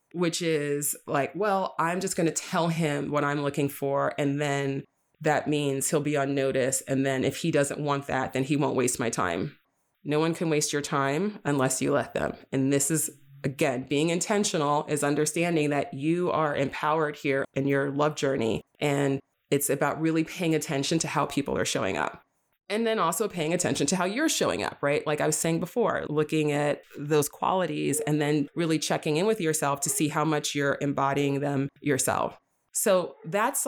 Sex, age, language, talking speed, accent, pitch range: female, 30-49, English, 200 wpm, American, 145-175 Hz